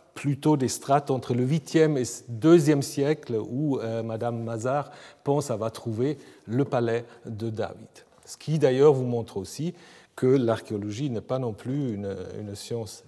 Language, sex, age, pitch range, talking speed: French, male, 40-59, 115-160 Hz, 165 wpm